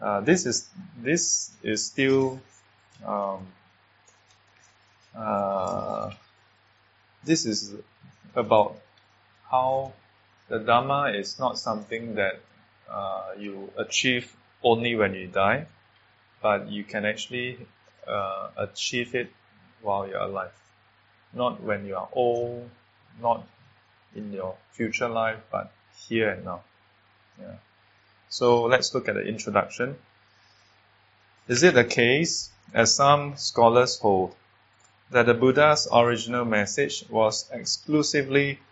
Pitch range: 105-125 Hz